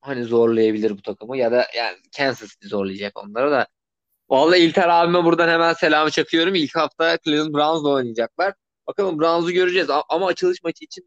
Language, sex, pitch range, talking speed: Turkish, male, 115-165 Hz, 165 wpm